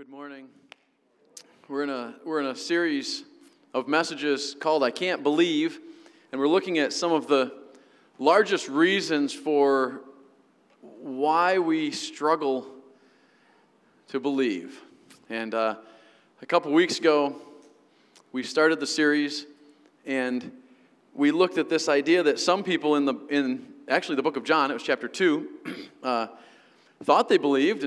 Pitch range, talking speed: 135-200 Hz, 140 wpm